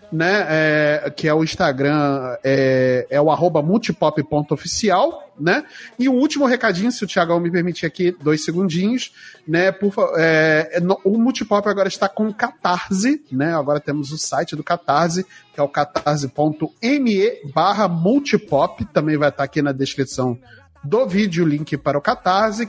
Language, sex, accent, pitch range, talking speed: Portuguese, male, Brazilian, 150-200 Hz, 150 wpm